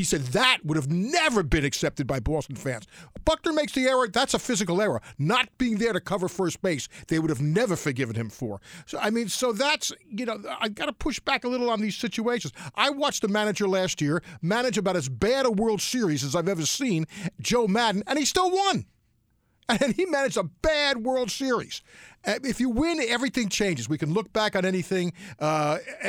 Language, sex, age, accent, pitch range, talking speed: English, male, 50-69, American, 155-240 Hz, 210 wpm